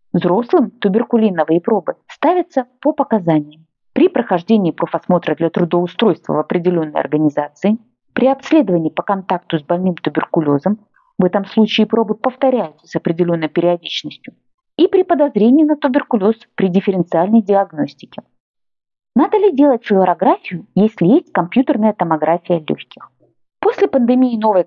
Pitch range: 175-255 Hz